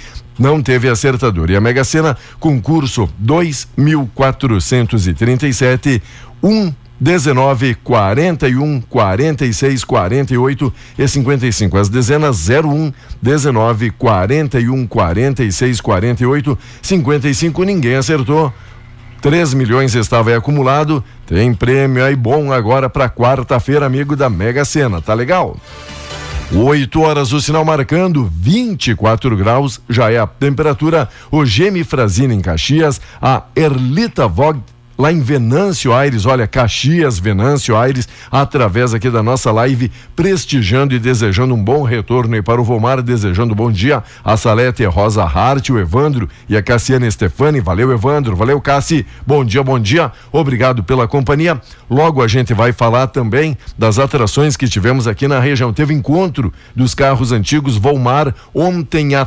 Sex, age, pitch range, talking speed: male, 60-79, 115-145 Hz, 135 wpm